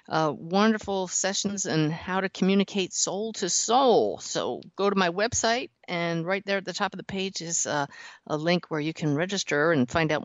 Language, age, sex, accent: English, 50-69, female, American